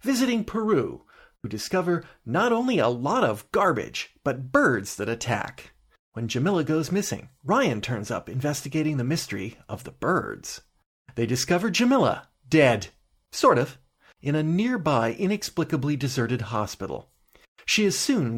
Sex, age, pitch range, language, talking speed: male, 40-59, 120-170 Hz, English, 135 wpm